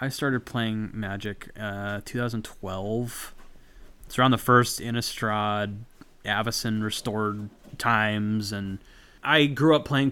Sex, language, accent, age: male, English, American, 30-49